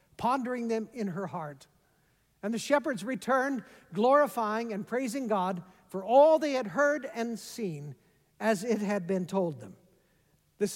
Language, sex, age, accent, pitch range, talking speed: English, male, 60-79, American, 215-290 Hz, 150 wpm